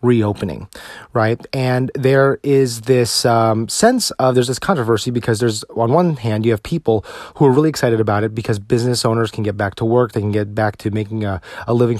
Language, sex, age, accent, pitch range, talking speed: English, male, 30-49, American, 110-135 Hz, 215 wpm